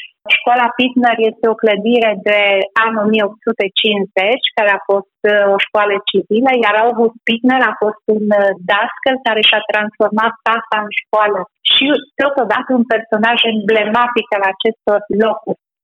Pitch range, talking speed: 210-245 Hz, 135 wpm